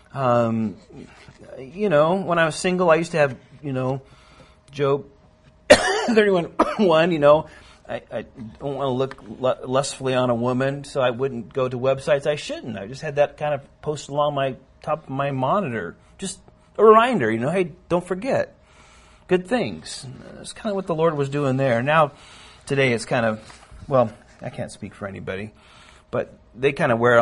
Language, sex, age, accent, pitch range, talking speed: Finnish, male, 40-59, American, 115-150 Hz, 190 wpm